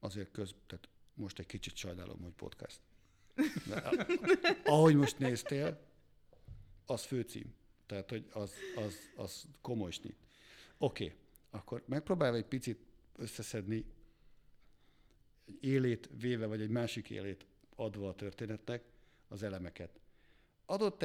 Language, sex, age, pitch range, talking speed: Hungarian, male, 60-79, 105-125 Hz, 120 wpm